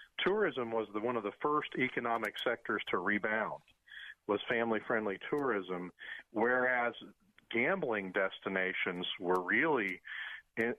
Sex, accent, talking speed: male, American, 110 wpm